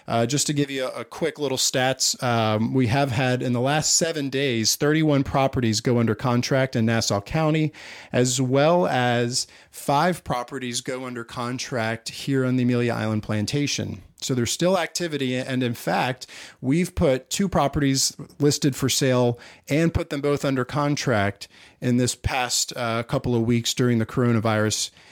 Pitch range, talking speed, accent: 120-155 Hz, 170 wpm, American